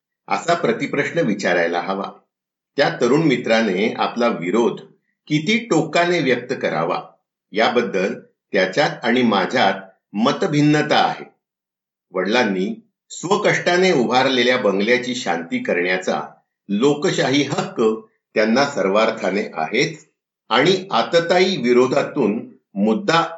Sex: male